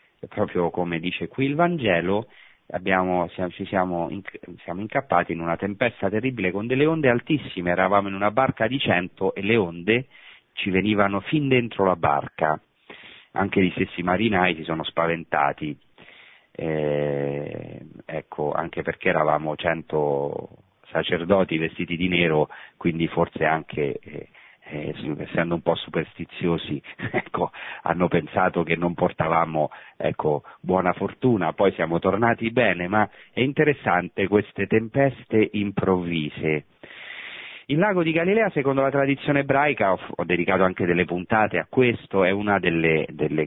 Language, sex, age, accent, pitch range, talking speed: Italian, male, 40-59, native, 85-110 Hz, 140 wpm